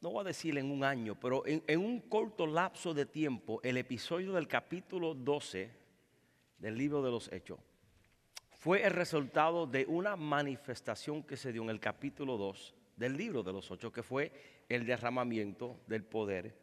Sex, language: male, English